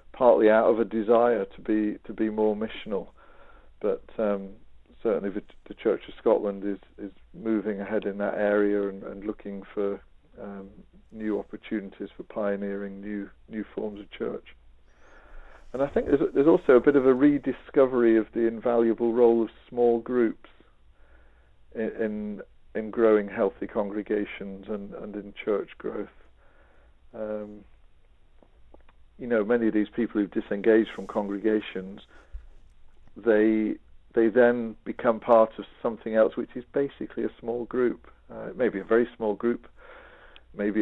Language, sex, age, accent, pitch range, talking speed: English, male, 40-59, British, 100-115 Hz, 155 wpm